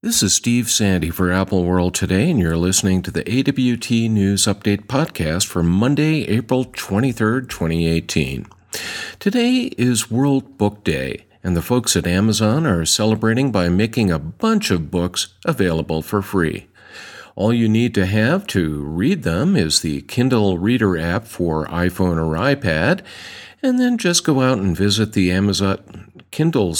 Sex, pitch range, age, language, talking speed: male, 90-125 Hz, 50-69, English, 155 wpm